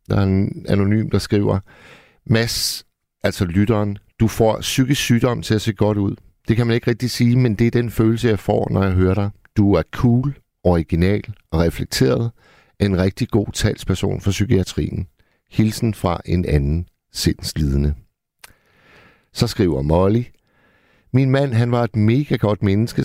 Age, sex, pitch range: 60-79, male, 90-115 Hz